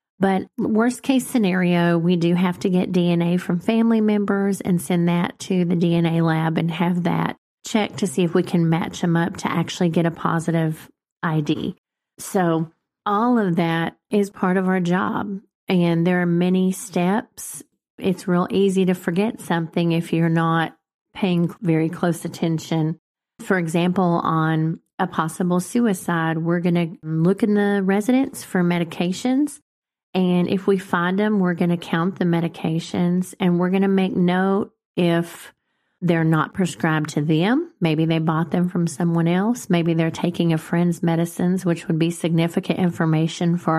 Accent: American